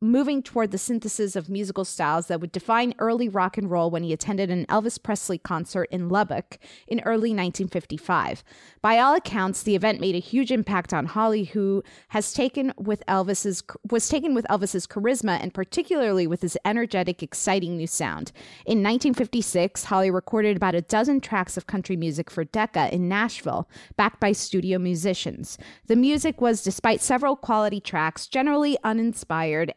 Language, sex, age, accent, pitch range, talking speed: English, female, 30-49, American, 185-230 Hz, 165 wpm